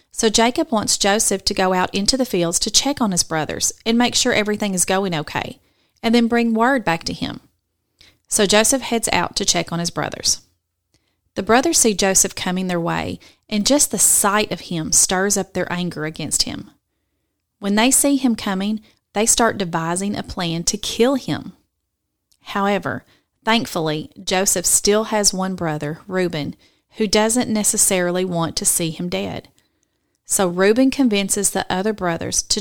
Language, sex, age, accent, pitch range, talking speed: English, female, 30-49, American, 175-220 Hz, 170 wpm